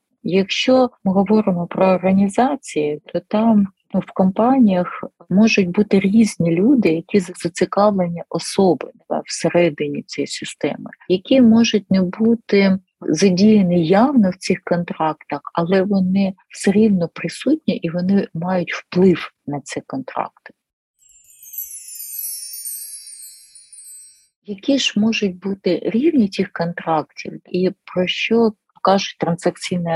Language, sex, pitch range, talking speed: Ukrainian, female, 175-230 Hz, 110 wpm